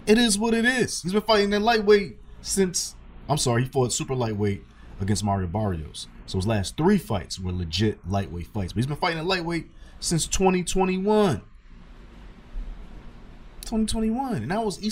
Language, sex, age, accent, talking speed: English, male, 30-49, American, 155 wpm